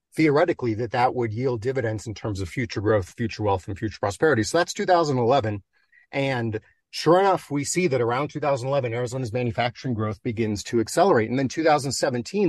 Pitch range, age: 110-140 Hz, 40-59